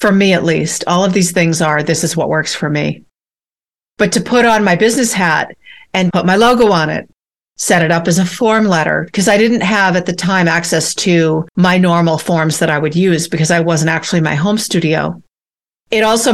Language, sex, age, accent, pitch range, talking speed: English, female, 50-69, American, 170-210 Hz, 220 wpm